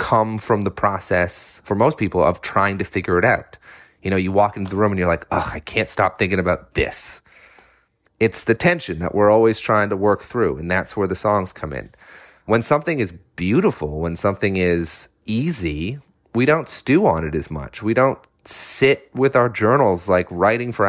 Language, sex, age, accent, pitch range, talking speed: English, male, 30-49, American, 90-110 Hz, 205 wpm